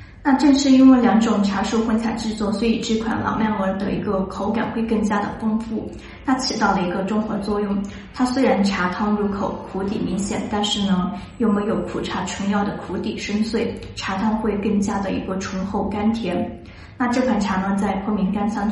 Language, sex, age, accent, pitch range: Chinese, female, 20-39, native, 200-225 Hz